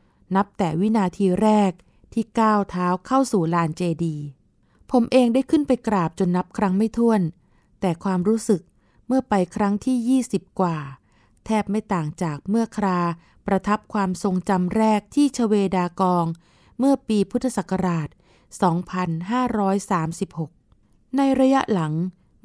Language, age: Thai, 20-39